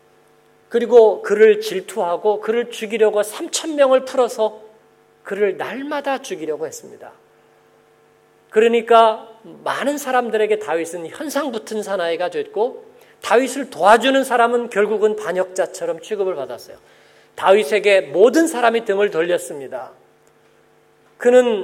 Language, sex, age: Korean, male, 40-59